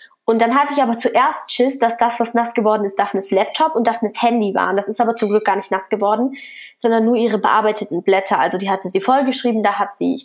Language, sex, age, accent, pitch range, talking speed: German, female, 10-29, German, 210-250 Hz, 245 wpm